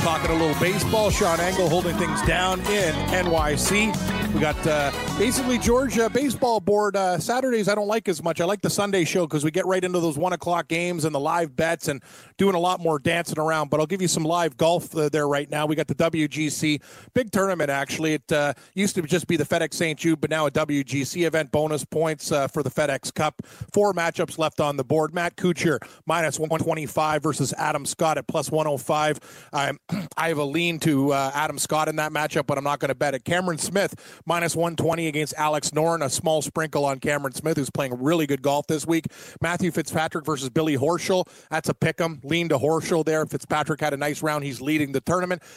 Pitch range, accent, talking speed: 150-170 Hz, American, 220 wpm